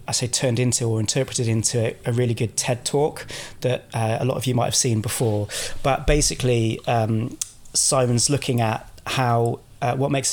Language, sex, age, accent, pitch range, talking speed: English, male, 20-39, British, 110-125 Hz, 185 wpm